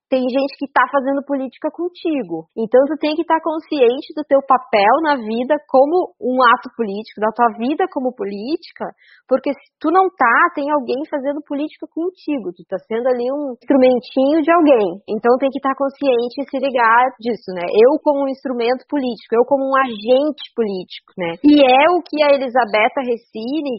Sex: female